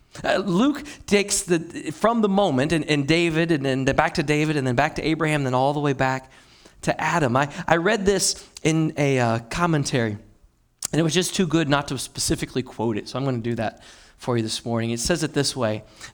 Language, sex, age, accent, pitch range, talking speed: English, male, 30-49, American, 130-190 Hz, 225 wpm